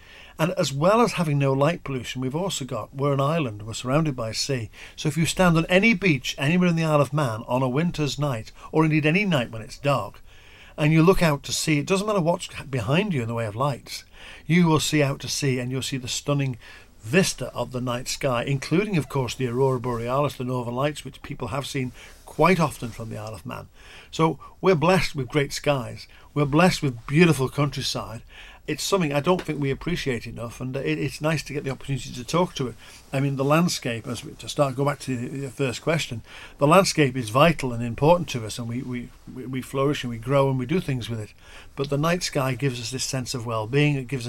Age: 50-69